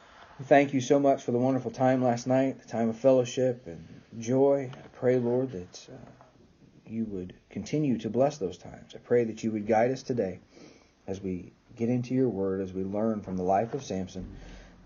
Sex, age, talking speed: male, 40-59, 205 wpm